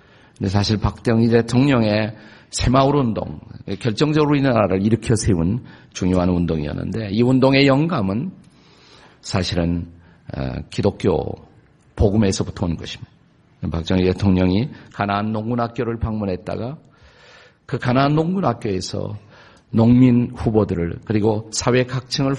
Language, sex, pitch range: Korean, male, 95-130 Hz